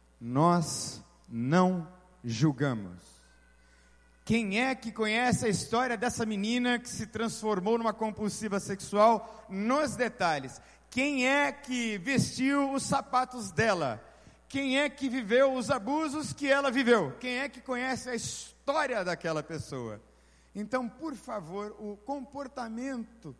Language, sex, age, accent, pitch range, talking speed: Portuguese, male, 50-69, Brazilian, 155-260 Hz, 125 wpm